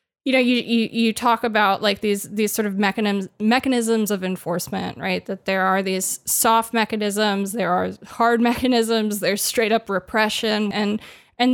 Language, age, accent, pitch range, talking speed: English, 20-39, American, 200-235 Hz, 170 wpm